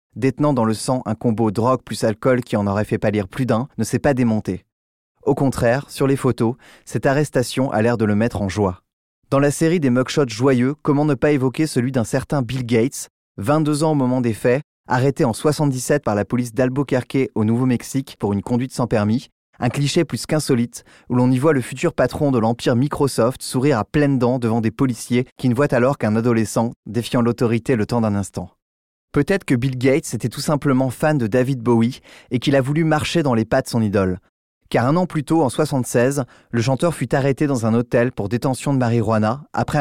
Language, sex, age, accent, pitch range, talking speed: French, male, 20-39, French, 115-140 Hz, 215 wpm